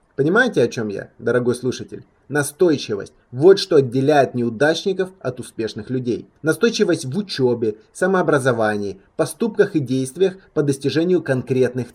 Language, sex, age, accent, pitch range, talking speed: Russian, male, 20-39, native, 125-180 Hz, 120 wpm